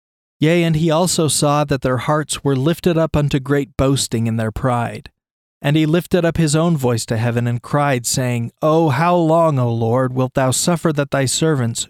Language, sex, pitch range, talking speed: English, male, 120-150 Hz, 200 wpm